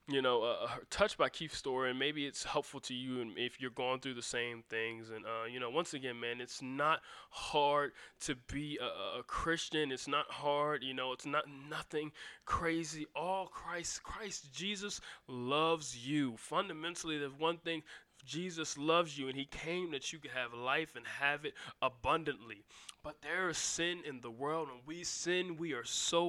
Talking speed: 190 wpm